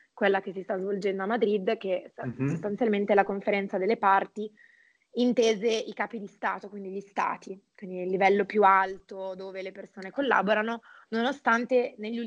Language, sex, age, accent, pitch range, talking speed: Italian, female, 20-39, native, 195-230 Hz, 155 wpm